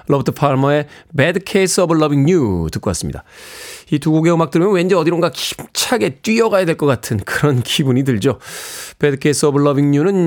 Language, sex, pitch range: Korean, male, 125-175 Hz